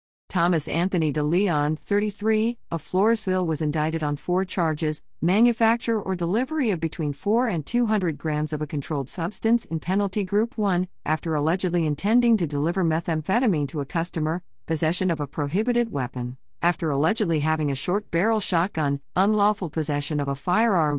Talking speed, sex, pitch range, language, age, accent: 155 wpm, female, 150-195 Hz, English, 50-69, American